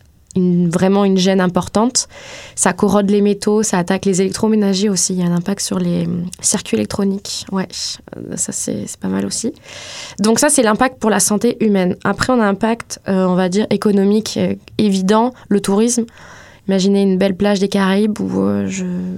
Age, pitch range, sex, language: 20-39, 185-210 Hz, female, French